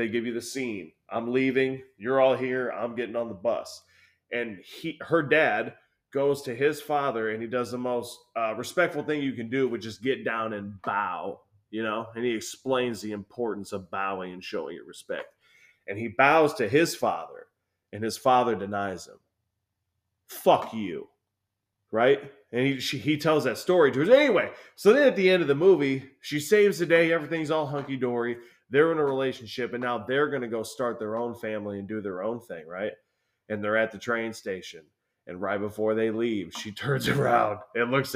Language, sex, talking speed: English, male, 200 wpm